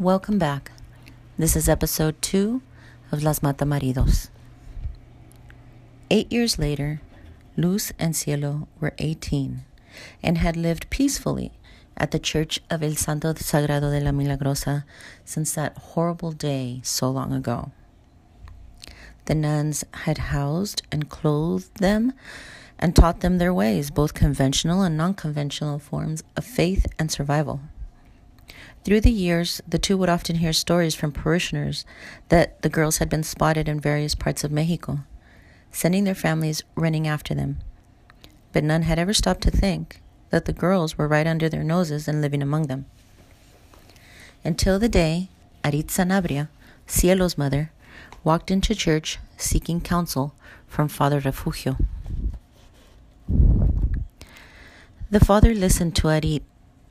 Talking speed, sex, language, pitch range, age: 135 wpm, female, English, 130-165 Hz, 40-59